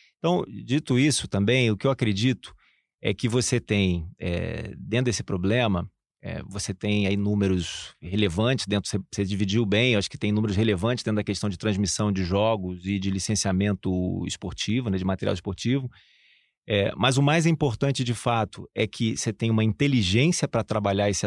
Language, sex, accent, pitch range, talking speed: Portuguese, male, Brazilian, 100-120 Hz, 180 wpm